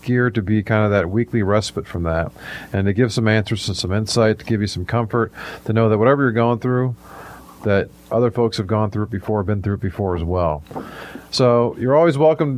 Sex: male